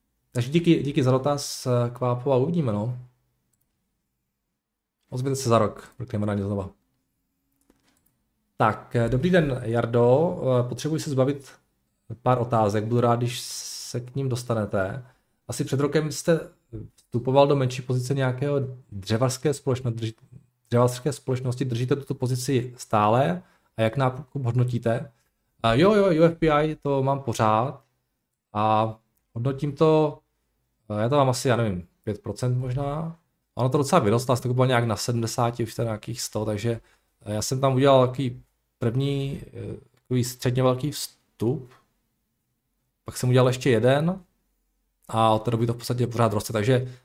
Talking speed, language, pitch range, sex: 140 wpm, Czech, 115-140 Hz, male